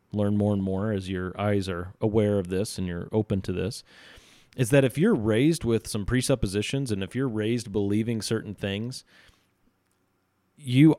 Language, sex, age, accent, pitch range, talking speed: English, male, 30-49, American, 100-125 Hz, 175 wpm